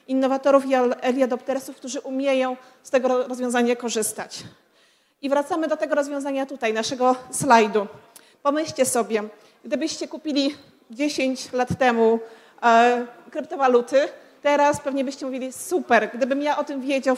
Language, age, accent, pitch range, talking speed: Polish, 40-59, native, 245-275 Hz, 125 wpm